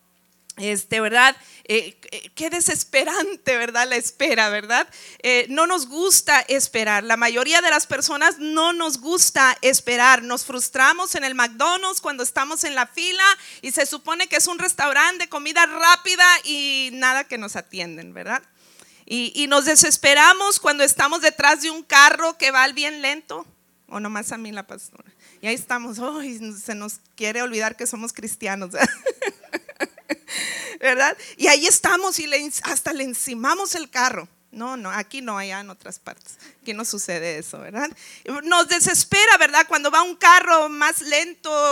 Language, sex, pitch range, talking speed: Spanish, female, 225-310 Hz, 165 wpm